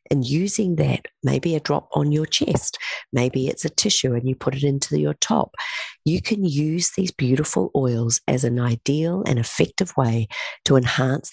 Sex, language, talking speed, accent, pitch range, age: female, English, 180 wpm, Australian, 125-155 Hz, 40-59